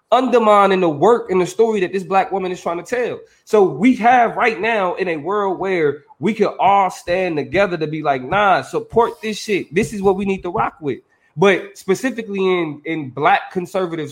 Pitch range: 150-200 Hz